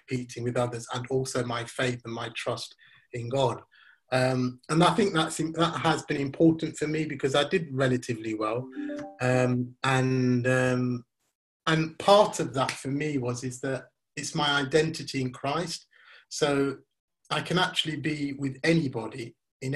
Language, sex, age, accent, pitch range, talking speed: English, male, 30-49, British, 125-140 Hz, 155 wpm